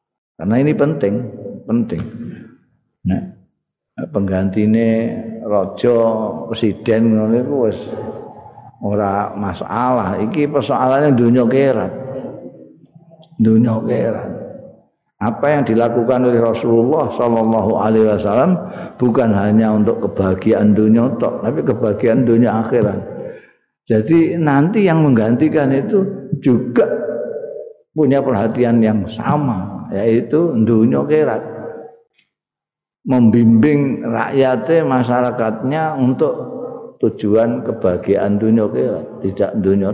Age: 50-69